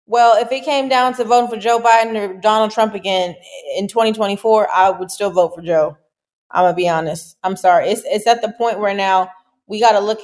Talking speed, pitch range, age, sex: 235 wpm, 185-235 Hz, 20-39, female